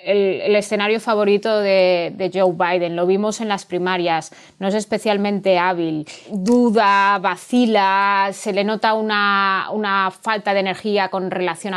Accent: Spanish